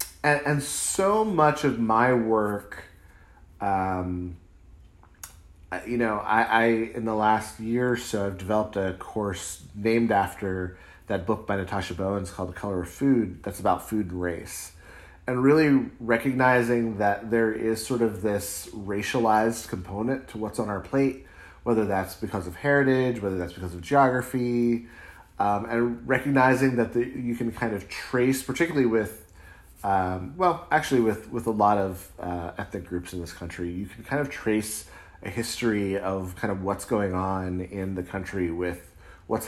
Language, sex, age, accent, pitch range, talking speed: English, male, 30-49, American, 90-120 Hz, 165 wpm